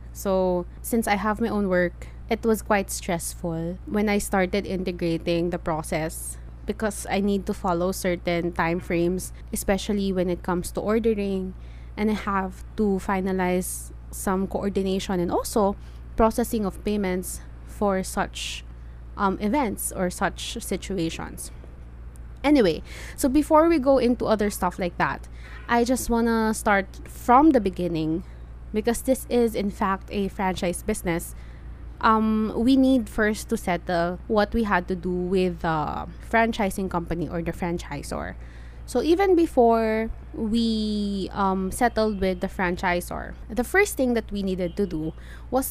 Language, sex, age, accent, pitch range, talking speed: English, female, 20-39, Filipino, 175-220 Hz, 145 wpm